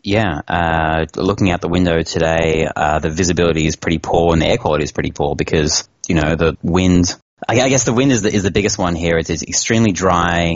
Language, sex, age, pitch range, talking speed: English, male, 20-39, 80-95 Hz, 235 wpm